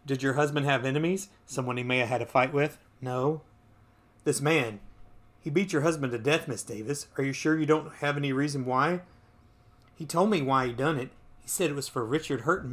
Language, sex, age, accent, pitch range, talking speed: English, male, 30-49, American, 120-150 Hz, 220 wpm